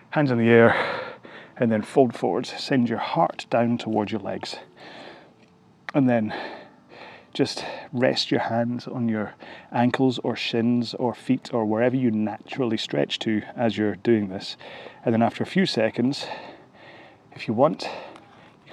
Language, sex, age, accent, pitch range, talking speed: English, male, 30-49, British, 110-125 Hz, 155 wpm